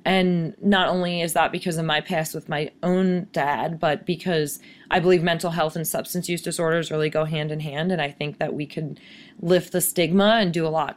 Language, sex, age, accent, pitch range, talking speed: English, female, 20-39, American, 165-195 Hz, 225 wpm